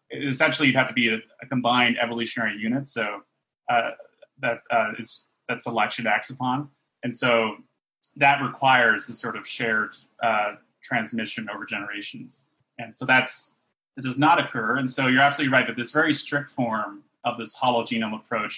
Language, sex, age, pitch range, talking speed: English, male, 30-49, 120-145 Hz, 170 wpm